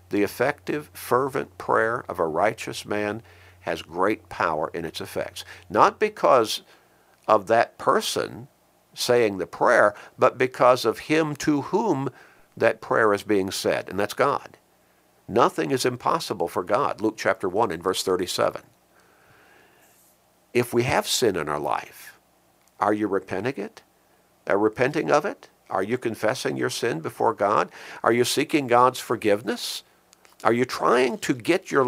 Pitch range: 90-110 Hz